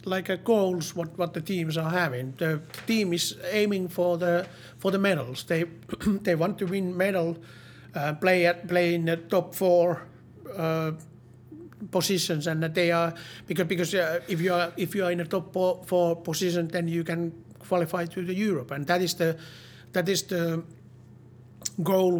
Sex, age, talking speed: male, 60-79, 185 wpm